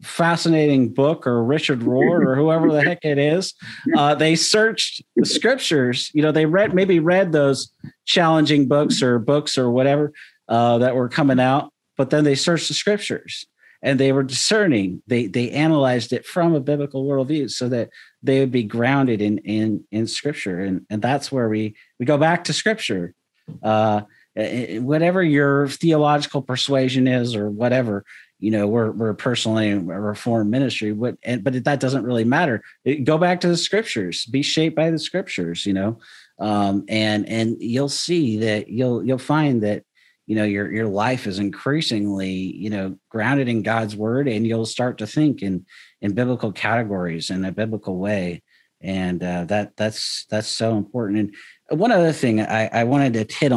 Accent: American